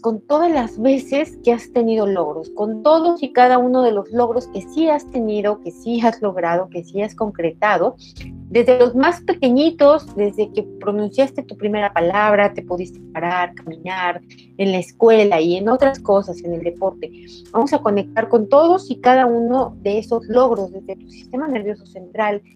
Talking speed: 180 wpm